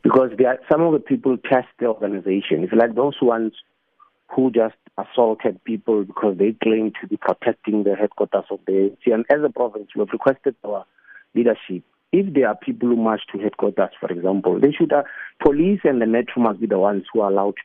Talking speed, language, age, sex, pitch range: 210 wpm, English, 50-69, male, 110-135 Hz